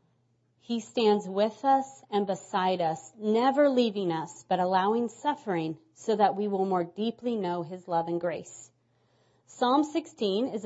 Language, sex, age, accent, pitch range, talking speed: English, female, 30-49, American, 190-255 Hz, 150 wpm